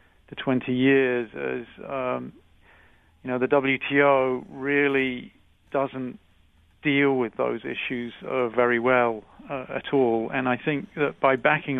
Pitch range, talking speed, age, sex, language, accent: 120-135 Hz, 130 wpm, 40-59, male, English, British